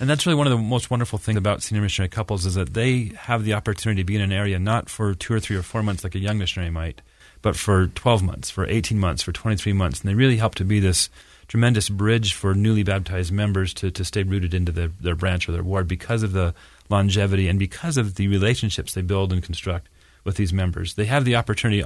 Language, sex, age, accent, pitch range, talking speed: English, male, 40-59, American, 90-110 Hz, 250 wpm